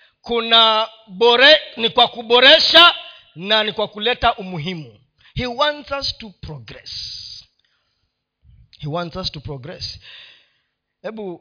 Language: Swahili